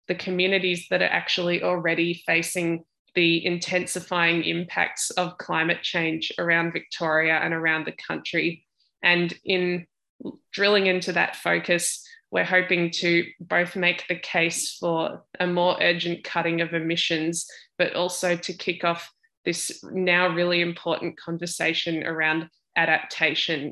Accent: Australian